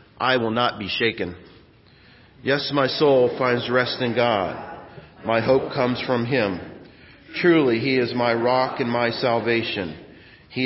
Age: 40-59